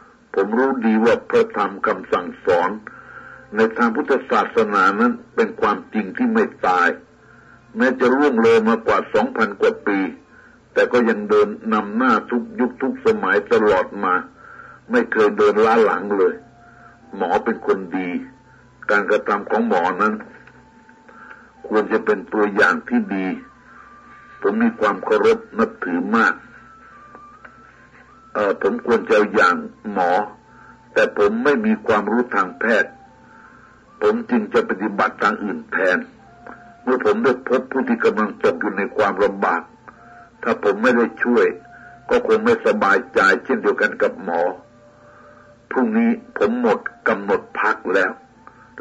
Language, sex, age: Thai, male, 60-79